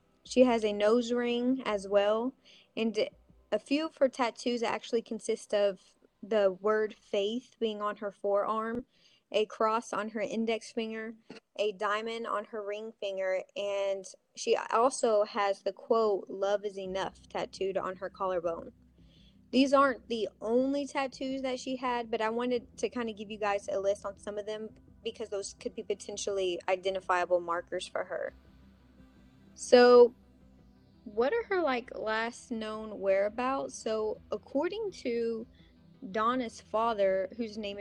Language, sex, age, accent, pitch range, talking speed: English, female, 20-39, American, 200-235 Hz, 150 wpm